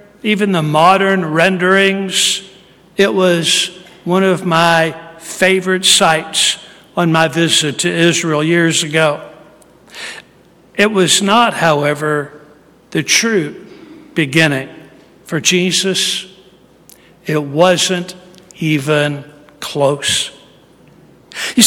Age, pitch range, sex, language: 60-79, 160-210 Hz, male, English